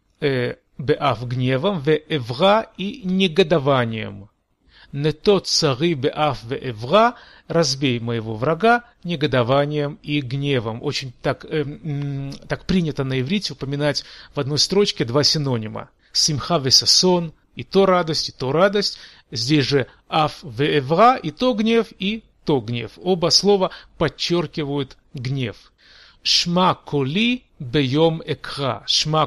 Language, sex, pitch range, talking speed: Russian, male, 125-170 Hz, 115 wpm